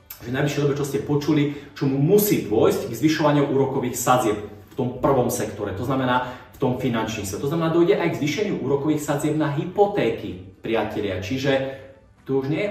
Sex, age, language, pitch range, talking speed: male, 30-49, Slovak, 110-150 Hz, 185 wpm